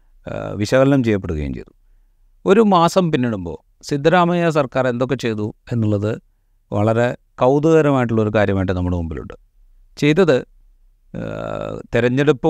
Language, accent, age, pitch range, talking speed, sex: Malayalam, native, 40-59, 100-125 Hz, 85 wpm, male